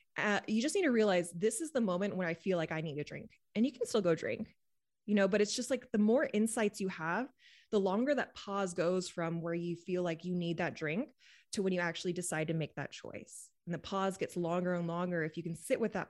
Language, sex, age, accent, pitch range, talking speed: English, female, 20-39, American, 160-200 Hz, 265 wpm